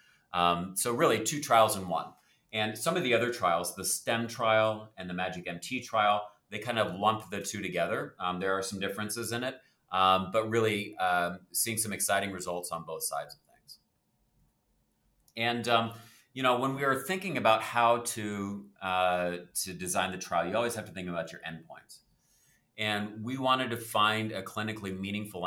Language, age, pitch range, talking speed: English, 30-49, 90-110 Hz, 185 wpm